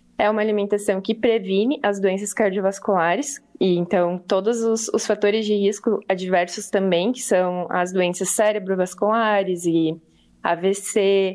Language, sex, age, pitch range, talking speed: Portuguese, female, 20-39, 190-225 Hz, 125 wpm